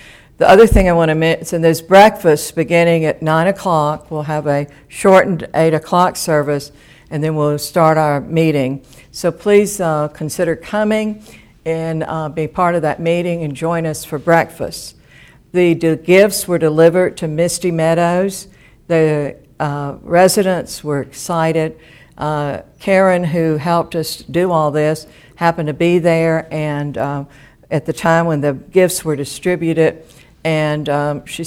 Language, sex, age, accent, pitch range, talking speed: English, female, 60-79, American, 145-170 Hz, 155 wpm